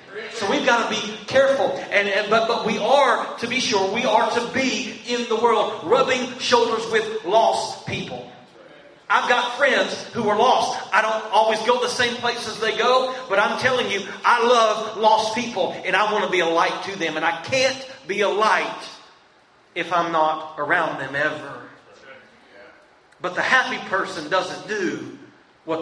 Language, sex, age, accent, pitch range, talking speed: English, male, 40-59, American, 190-240 Hz, 180 wpm